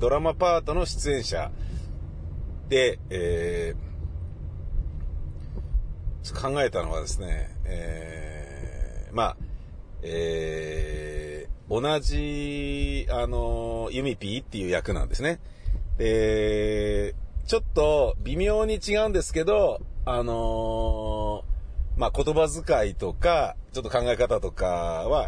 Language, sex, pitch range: Japanese, male, 80-130 Hz